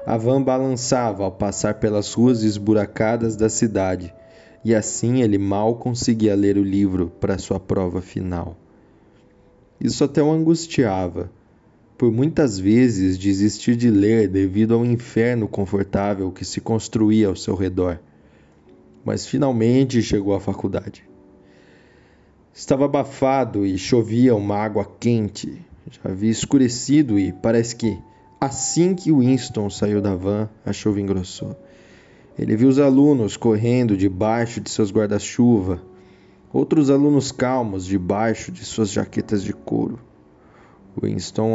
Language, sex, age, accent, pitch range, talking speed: Portuguese, male, 20-39, Brazilian, 100-125 Hz, 125 wpm